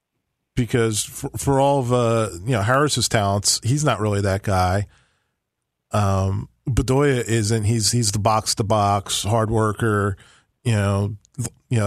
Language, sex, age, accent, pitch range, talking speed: English, male, 40-59, American, 105-125 Hz, 145 wpm